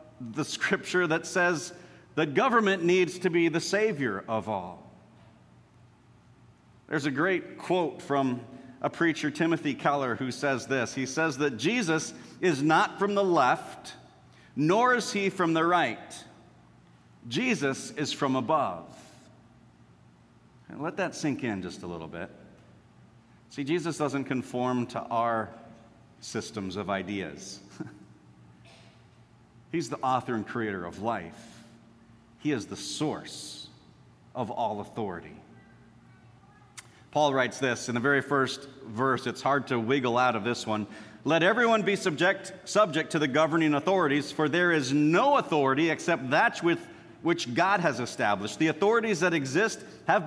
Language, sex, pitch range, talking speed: English, male, 115-170 Hz, 140 wpm